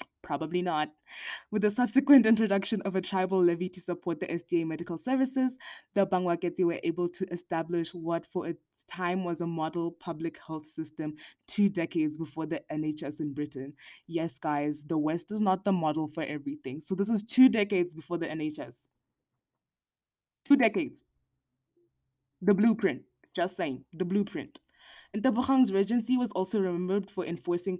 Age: 20-39